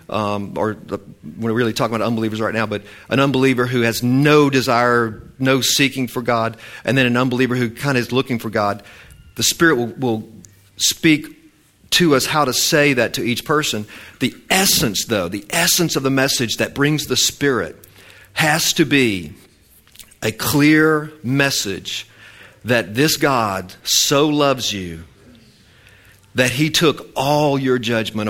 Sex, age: male, 50-69